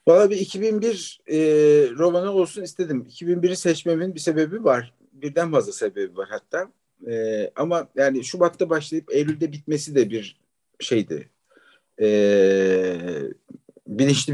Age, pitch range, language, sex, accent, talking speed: 50-69, 115-175 Hz, Turkish, male, native, 120 wpm